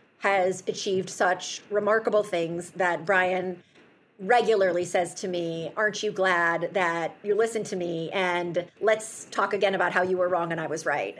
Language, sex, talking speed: English, female, 170 wpm